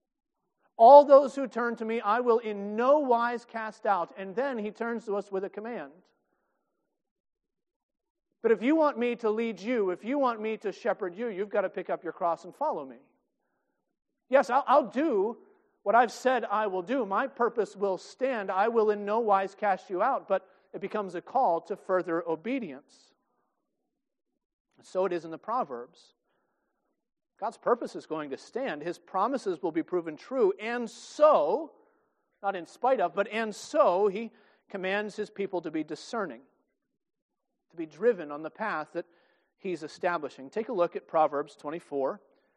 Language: English